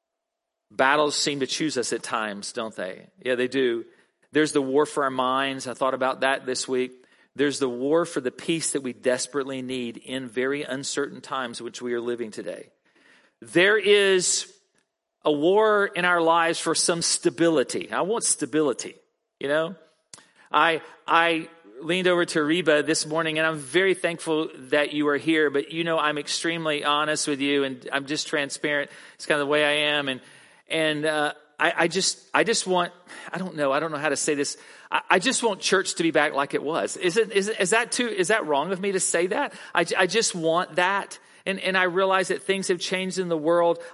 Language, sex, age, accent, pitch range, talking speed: English, male, 40-59, American, 145-180 Hz, 210 wpm